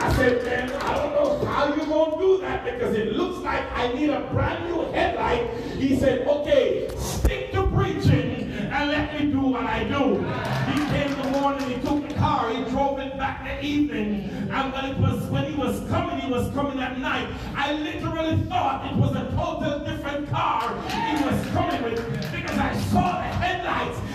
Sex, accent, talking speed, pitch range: male, American, 195 wpm, 210-290 Hz